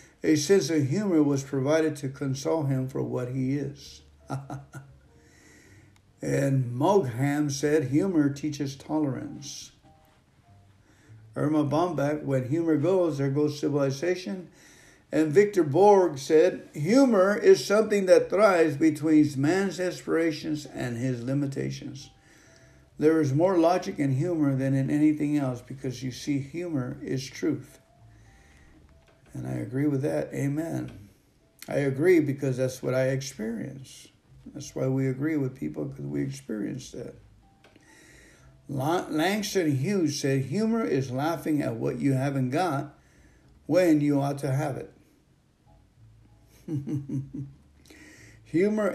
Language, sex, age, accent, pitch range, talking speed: English, male, 60-79, American, 130-155 Hz, 120 wpm